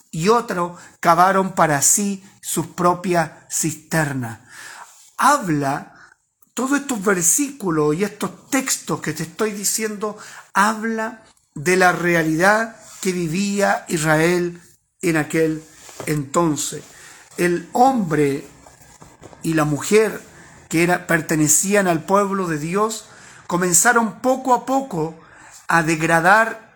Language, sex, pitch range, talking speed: Spanish, male, 160-220 Hz, 105 wpm